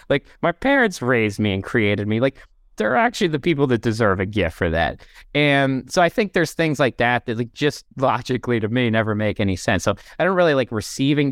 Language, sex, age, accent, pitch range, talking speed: English, male, 30-49, American, 100-130 Hz, 230 wpm